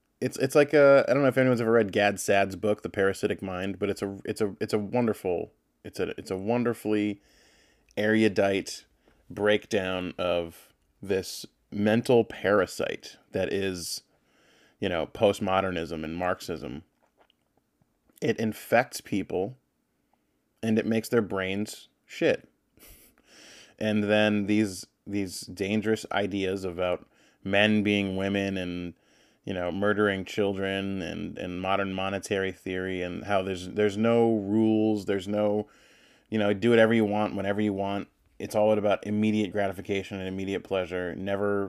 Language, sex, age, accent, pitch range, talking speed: English, male, 20-39, American, 95-105 Hz, 140 wpm